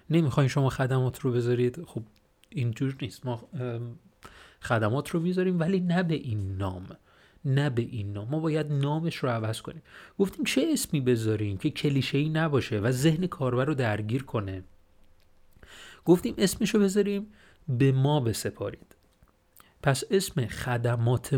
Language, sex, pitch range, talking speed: Persian, male, 115-155 Hz, 140 wpm